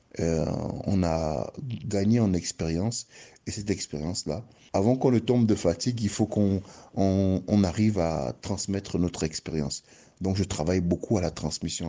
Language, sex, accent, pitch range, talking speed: French, male, French, 80-100 Hz, 160 wpm